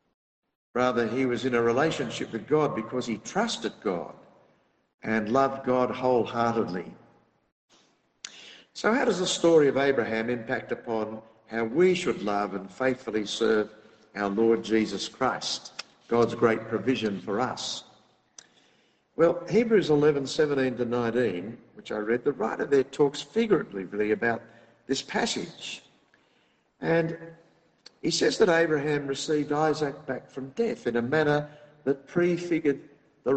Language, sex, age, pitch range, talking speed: English, male, 60-79, 115-155 Hz, 130 wpm